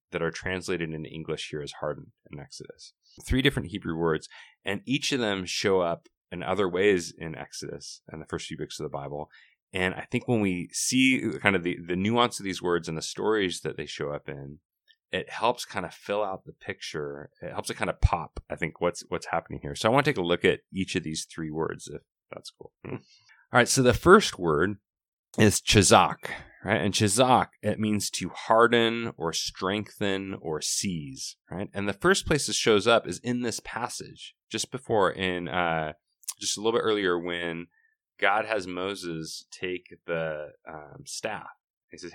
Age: 30-49